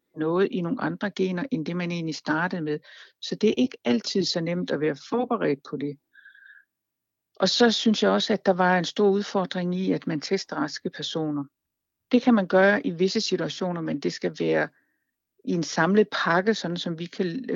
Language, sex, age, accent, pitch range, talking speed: Danish, female, 60-79, native, 160-205 Hz, 200 wpm